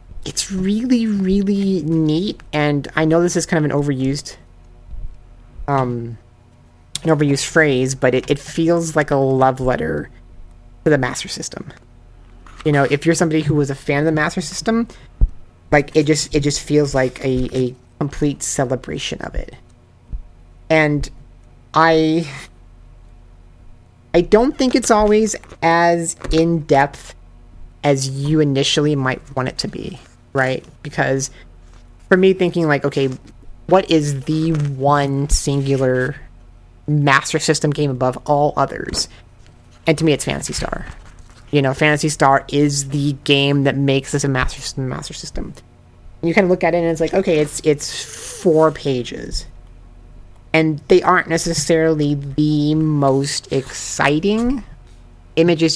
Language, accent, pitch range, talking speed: English, American, 130-160 Hz, 145 wpm